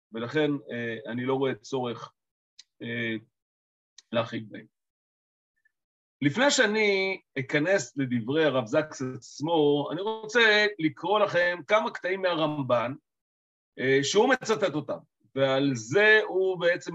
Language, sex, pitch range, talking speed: Hebrew, male, 130-195 Hz, 110 wpm